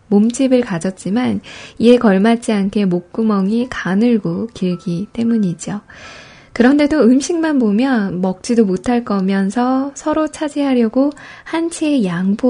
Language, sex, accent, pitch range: Korean, female, native, 190-250 Hz